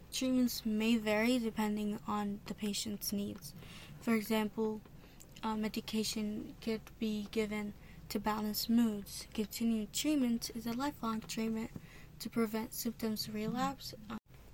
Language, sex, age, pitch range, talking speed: English, female, 10-29, 210-235 Hz, 115 wpm